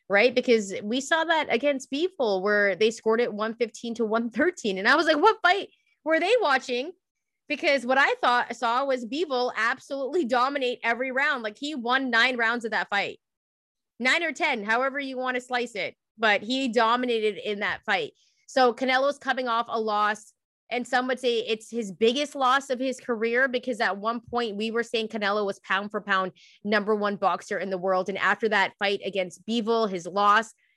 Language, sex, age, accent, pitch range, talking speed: English, female, 20-39, American, 200-255 Hz, 195 wpm